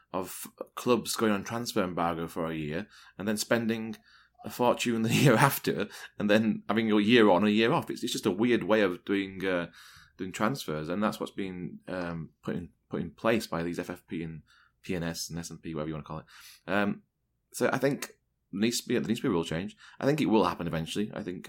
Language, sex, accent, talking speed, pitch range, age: English, male, British, 225 wpm, 85-105 Hz, 20-39